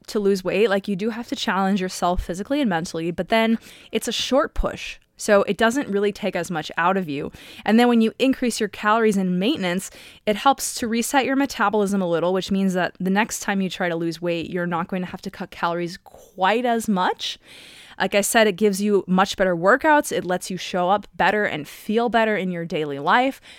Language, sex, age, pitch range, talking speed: English, female, 20-39, 185-245 Hz, 230 wpm